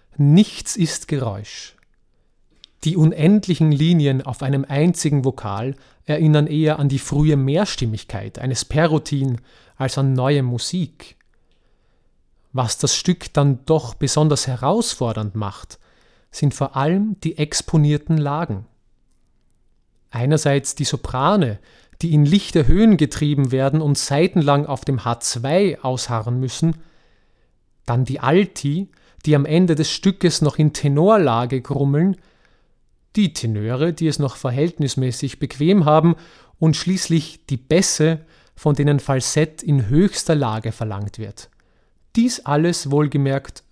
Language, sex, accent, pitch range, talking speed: German, male, German, 130-160 Hz, 120 wpm